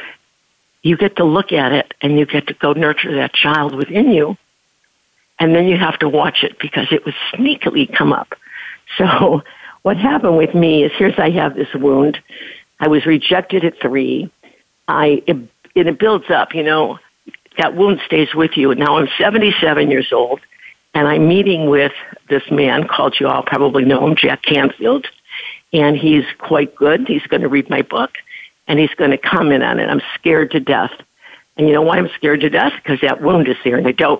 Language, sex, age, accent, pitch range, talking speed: English, female, 60-79, American, 145-185 Hz, 200 wpm